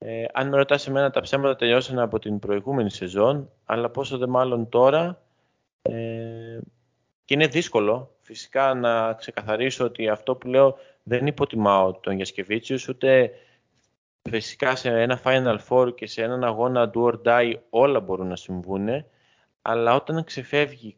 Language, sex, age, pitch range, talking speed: Greek, male, 20-39, 115-140 Hz, 150 wpm